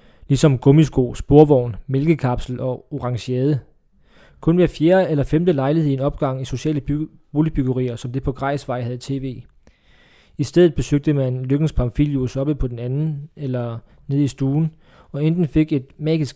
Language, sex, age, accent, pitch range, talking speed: Danish, male, 20-39, native, 130-155 Hz, 165 wpm